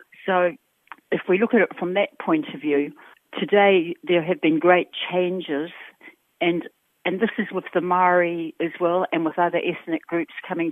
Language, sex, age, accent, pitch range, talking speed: English, female, 60-79, British, 160-190 Hz, 180 wpm